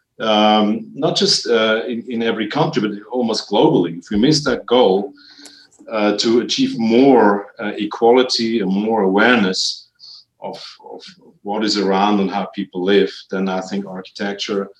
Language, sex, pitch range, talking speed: English, male, 100-125 Hz, 155 wpm